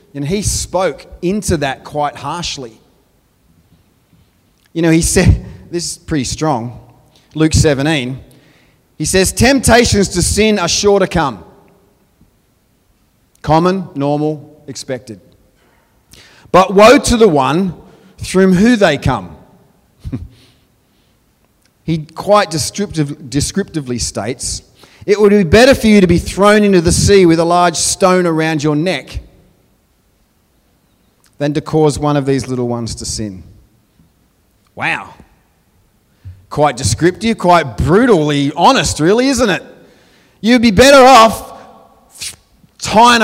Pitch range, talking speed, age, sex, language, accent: 125-185 Hz, 120 wpm, 30-49, male, English, Australian